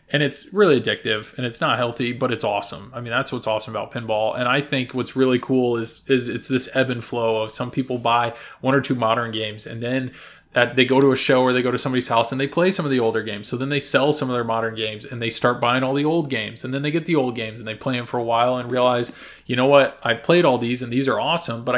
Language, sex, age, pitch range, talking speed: English, male, 20-39, 115-155 Hz, 295 wpm